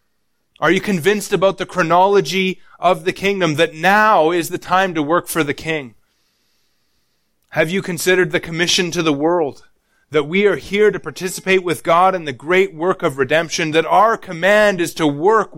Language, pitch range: English, 160-200 Hz